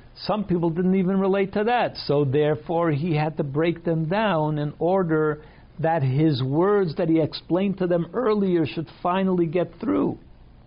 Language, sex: English, male